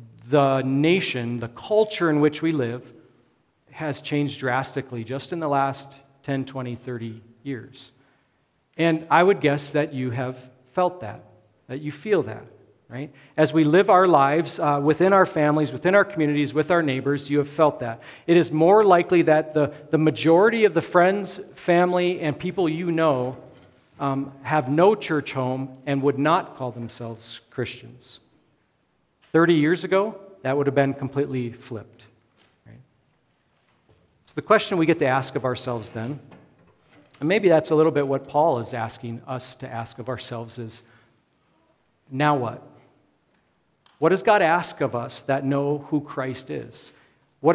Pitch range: 130-160 Hz